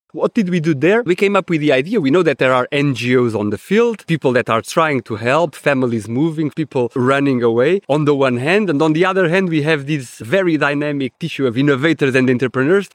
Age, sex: 30-49, male